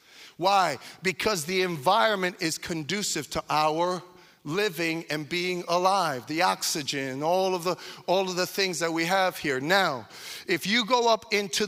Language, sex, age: English, male, 40-59